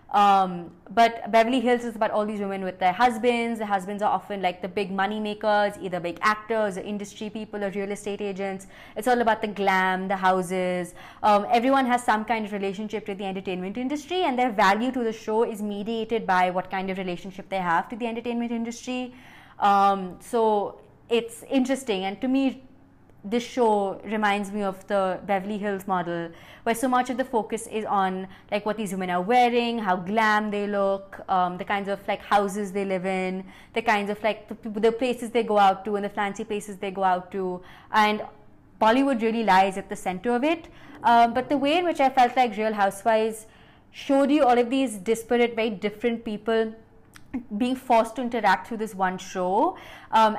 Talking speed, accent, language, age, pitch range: 200 wpm, Indian, English, 20-39, 195-235 Hz